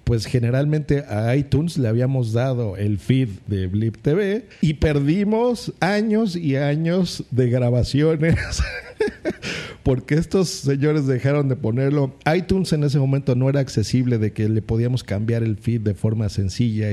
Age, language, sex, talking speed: 50-69, Spanish, male, 150 wpm